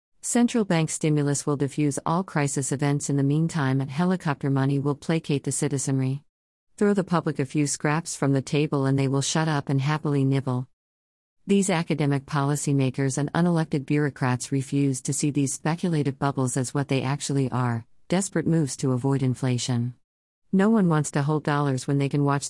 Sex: female